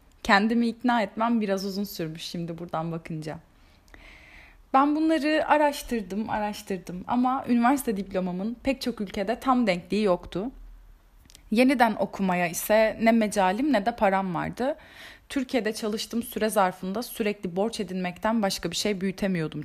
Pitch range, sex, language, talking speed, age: 195-255 Hz, female, Turkish, 130 wpm, 30-49